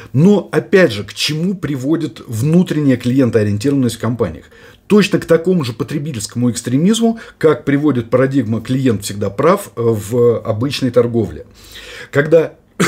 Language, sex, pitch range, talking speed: Russian, male, 120-180 Hz, 120 wpm